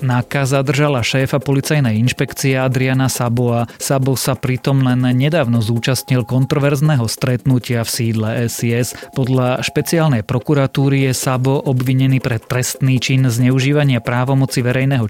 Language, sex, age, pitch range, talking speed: Slovak, male, 30-49, 115-140 Hz, 120 wpm